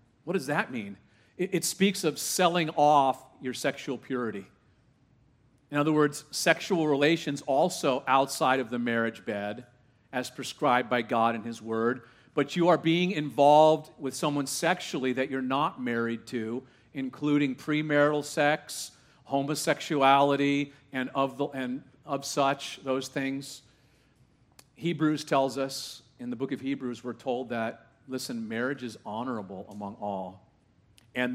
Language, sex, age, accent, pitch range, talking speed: English, male, 40-59, American, 120-145 Hz, 135 wpm